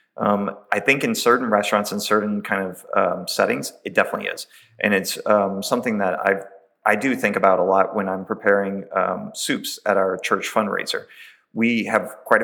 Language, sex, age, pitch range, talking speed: English, male, 30-49, 95-110 Hz, 190 wpm